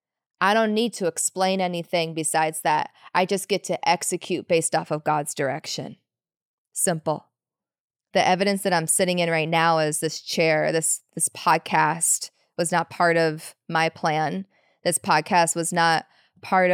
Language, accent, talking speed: English, American, 160 wpm